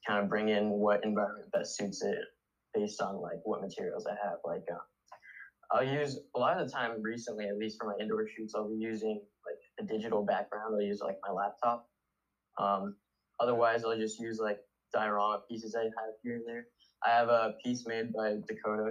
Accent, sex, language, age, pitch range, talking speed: American, male, English, 10-29, 105-120 Hz, 205 wpm